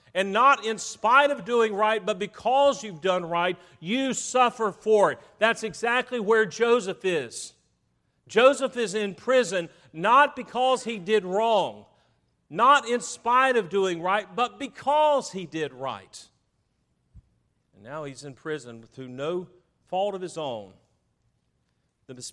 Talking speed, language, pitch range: 140 wpm, English, 130-215 Hz